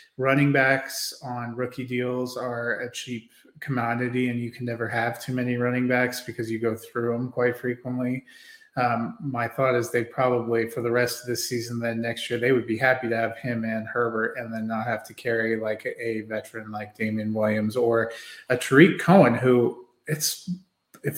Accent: American